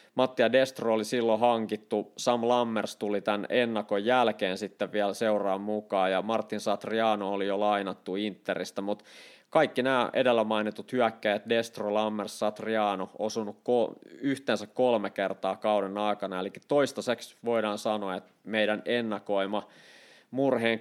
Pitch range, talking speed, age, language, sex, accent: 100-115 Hz, 130 wpm, 20-39, Finnish, male, native